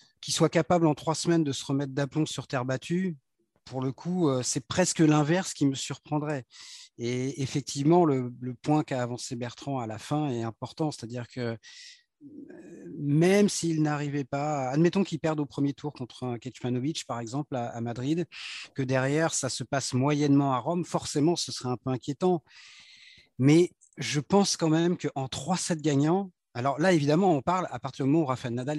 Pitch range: 130-160 Hz